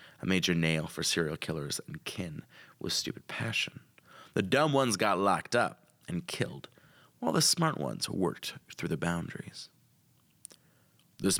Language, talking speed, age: English, 145 wpm, 30-49